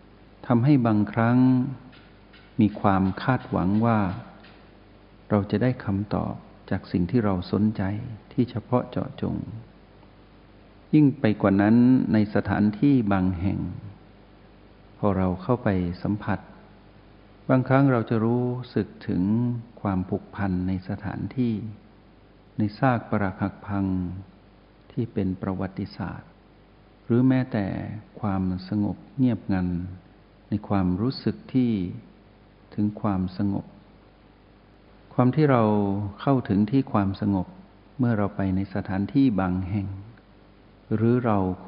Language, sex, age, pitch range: Thai, male, 60-79, 95-115 Hz